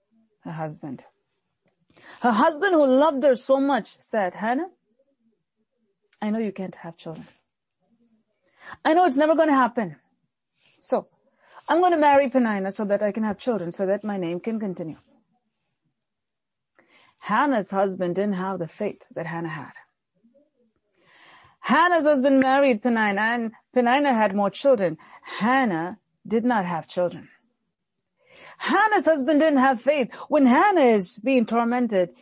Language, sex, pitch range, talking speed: English, female, 200-285 Hz, 140 wpm